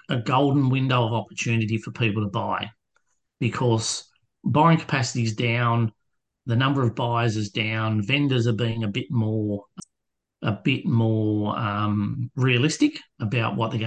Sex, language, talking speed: male, English, 145 wpm